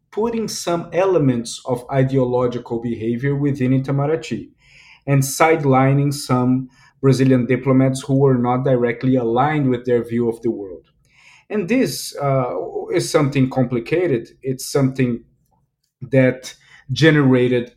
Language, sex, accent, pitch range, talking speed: English, male, Brazilian, 125-150 Hz, 115 wpm